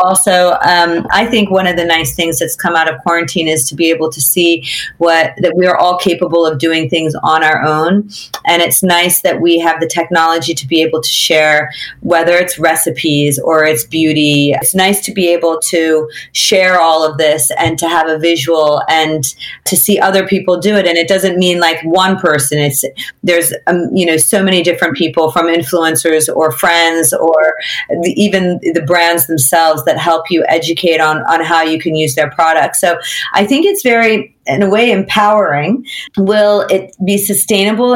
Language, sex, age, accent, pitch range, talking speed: English, female, 40-59, American, 160-190 Hz, 200 wpm